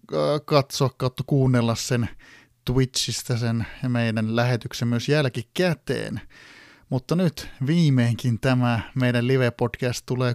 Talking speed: 105 wpm